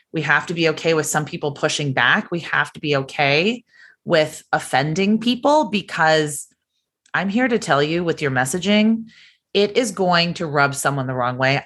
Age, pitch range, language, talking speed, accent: 30-49, 135-175 Hz, English, 185 wpm, American